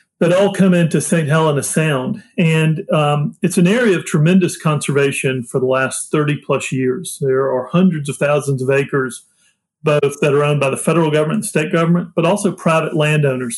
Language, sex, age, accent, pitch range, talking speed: English, male, 40-59, American, 140-180 Hz, 185 wpm